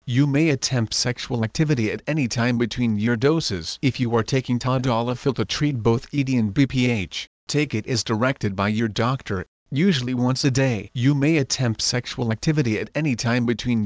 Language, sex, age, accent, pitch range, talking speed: English, male, 40-59, American, 115-140 Hz, 180 wpm